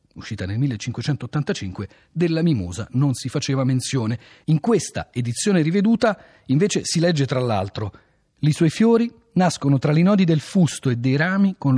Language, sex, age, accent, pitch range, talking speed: Italian, male, 40-59, native, 120-190 Hz, 160 wpm